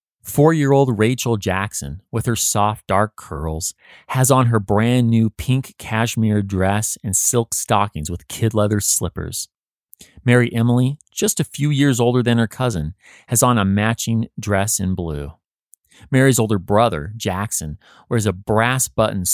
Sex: male